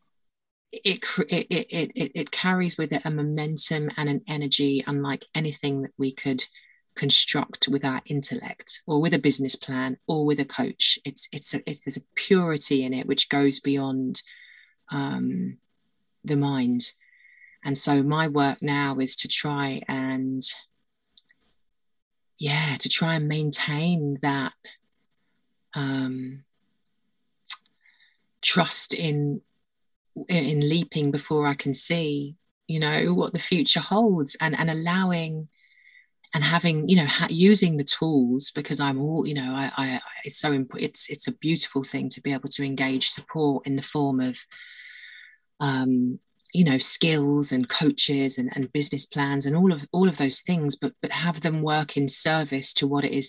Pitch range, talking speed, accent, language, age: 135-160 Hz, 155 wpm, British, English, 20-39